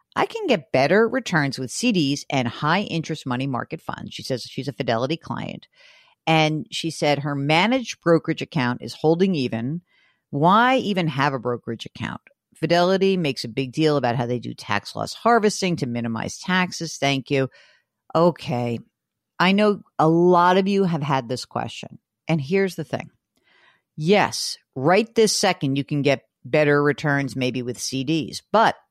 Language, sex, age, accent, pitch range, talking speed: English, female, 50-69, American, 140-215 Hz, 165 wpm